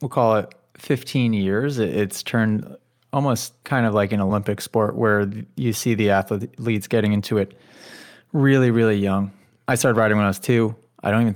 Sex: male